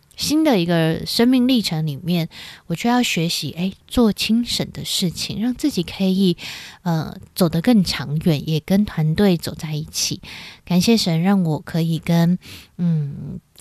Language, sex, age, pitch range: Chinese, female, 20-39, 165-220 Hz